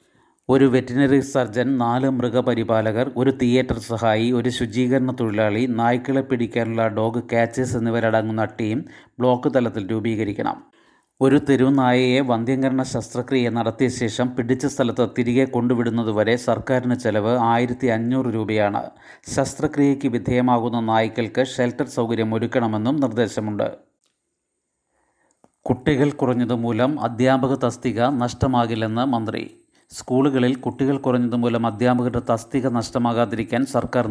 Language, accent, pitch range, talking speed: Malayalam, native, 115-130 Hz, 95 wpm